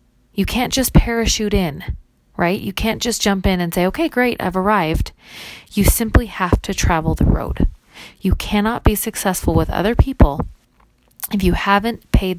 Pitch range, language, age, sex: 170-205 Hz, English, 30-49, female